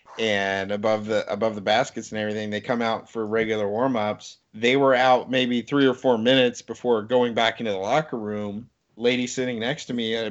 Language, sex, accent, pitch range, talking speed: English, male, American, 110-130 Hz, 205 wpm